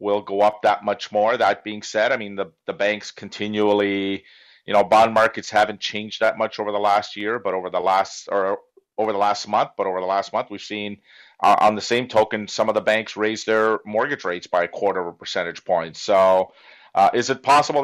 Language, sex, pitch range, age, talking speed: English, male, 100-120 Hz, 40-59, 220 wpm